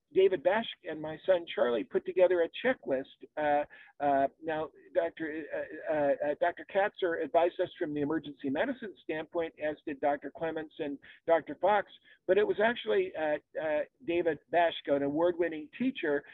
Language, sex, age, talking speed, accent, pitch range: English, male, 50-69, 160 wpm, American, 155-200 Hz